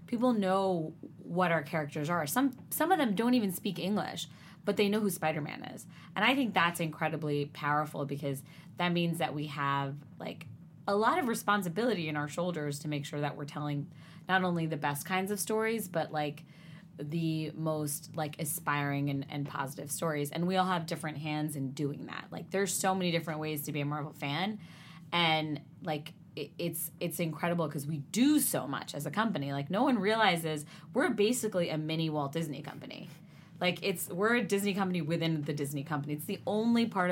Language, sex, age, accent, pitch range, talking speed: English, female, 20-39, American, 150-180 Hz, 195 wpm